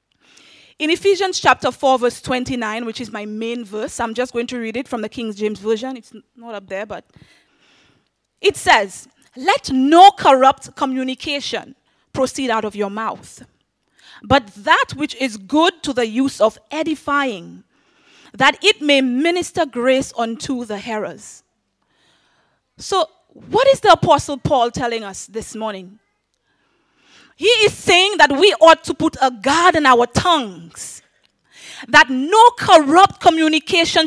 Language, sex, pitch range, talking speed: English, female, 235-345 Hz, 145 wpm